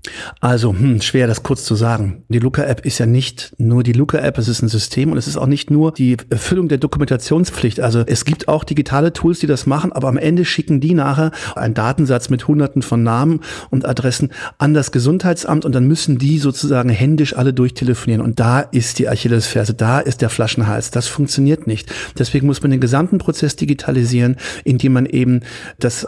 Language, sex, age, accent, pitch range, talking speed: German, male, 50-69, German, 120-145 Hz, 200 wpm